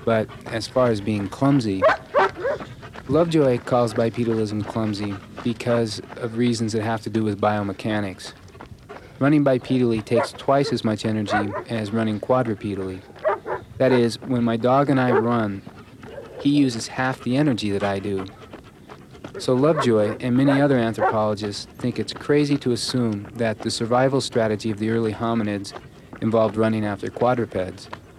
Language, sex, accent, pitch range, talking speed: English, male, American, 105-130 Hz, 145 wpm